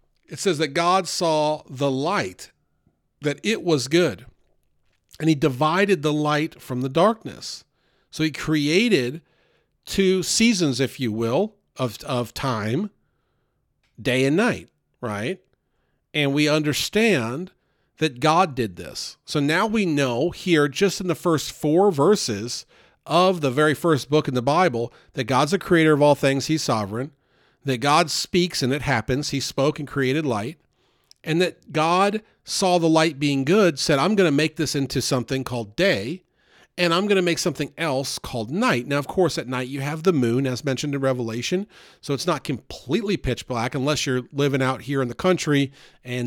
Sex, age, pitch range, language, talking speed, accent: male, 40-59, 130-165 Hz, English, 175 wpm, American